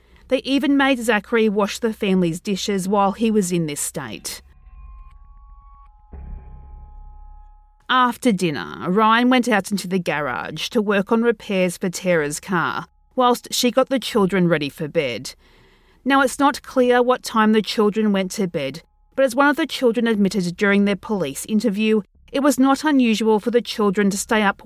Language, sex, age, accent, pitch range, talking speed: English, female, 40-59, Australian, 170-240 Hz, 170 wpm